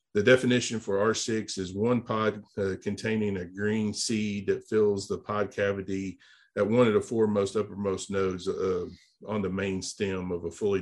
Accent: American